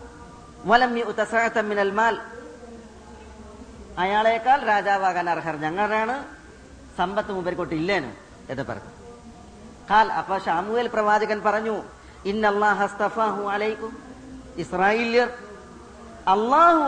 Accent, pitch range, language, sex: native, 215-270 Hz, Malayalam, female